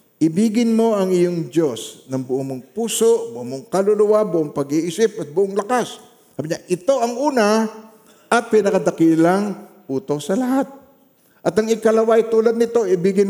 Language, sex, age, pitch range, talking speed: Filipino, male, 50-69, 150-220 Hz, 145 wpm